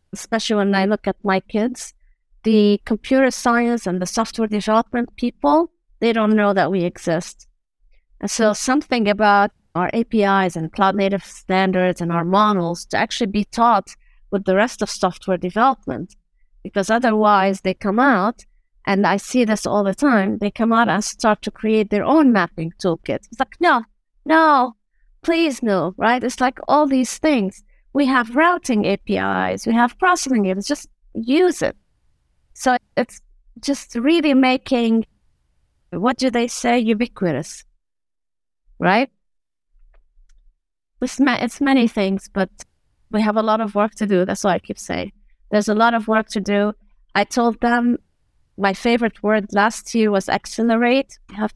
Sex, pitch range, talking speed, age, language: female, 195-245 Hz, 160 wpm, 50-69, English